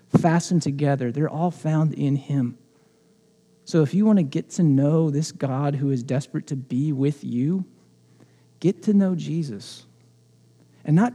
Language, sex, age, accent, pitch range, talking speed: English, male, 40-59, American, 120-150 Hz, 160 wpm